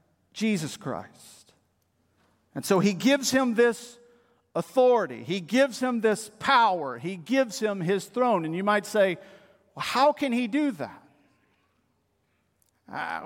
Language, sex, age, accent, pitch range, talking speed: English, male, 50-69, American, 185-235 Hz, 130 wpm